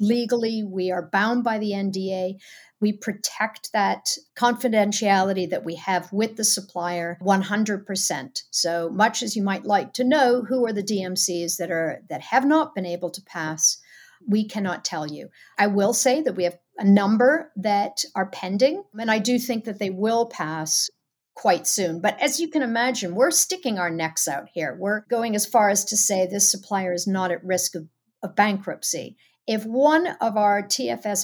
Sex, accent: female, American